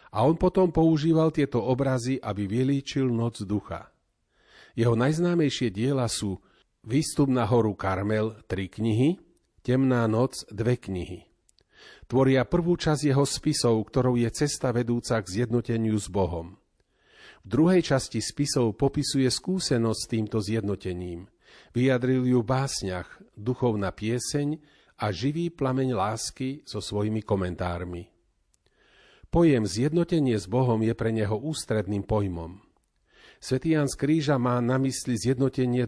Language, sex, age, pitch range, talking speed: Slovak, male, 40-59, 110-140 Hz, 125 wpm